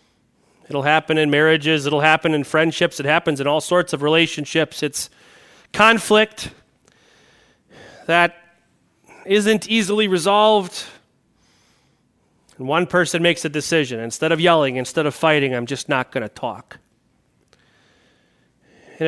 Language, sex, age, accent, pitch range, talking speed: English, male, 30-49, American, 155-210 Hz, 125 wpm